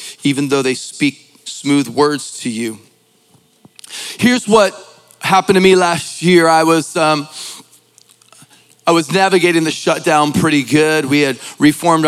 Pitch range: 140-160 Hz